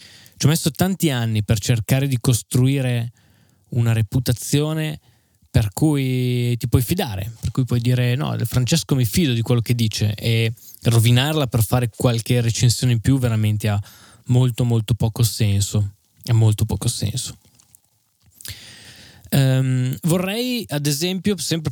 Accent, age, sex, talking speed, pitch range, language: native, 10-29, male, 140 wpm, 110-135 Hz, Italian